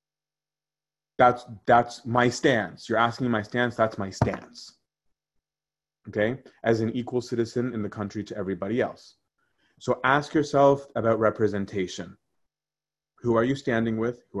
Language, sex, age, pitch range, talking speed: English, male, 30-49, 110-135 Hz, 140 wpm